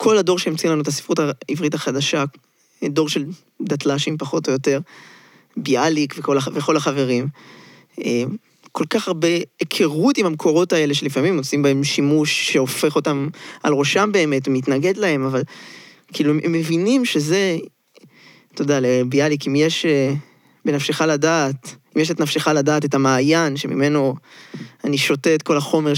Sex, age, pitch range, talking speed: male, 20-39, 140-170 Hz, 140 wpm